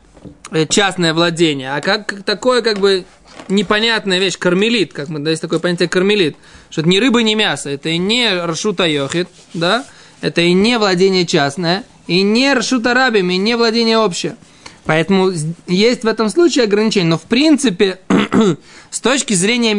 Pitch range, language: 170-215 Hz, Russian